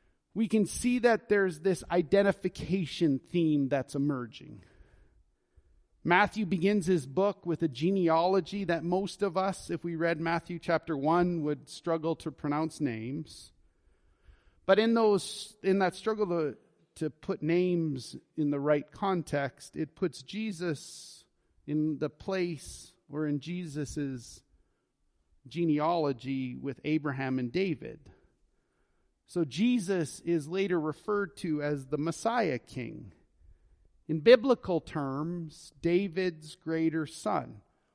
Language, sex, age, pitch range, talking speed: English, male, 40-59, 150-195 Hz, 120 wpm